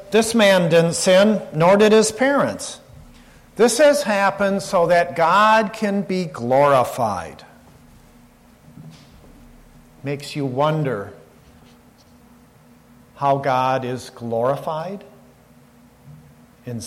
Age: 50-69